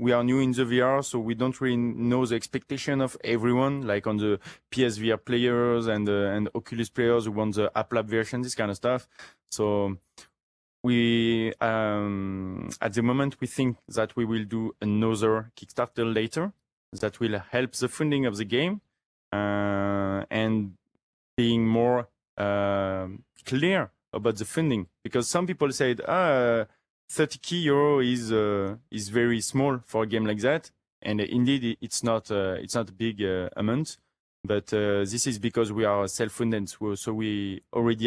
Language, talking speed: English, 170 wpm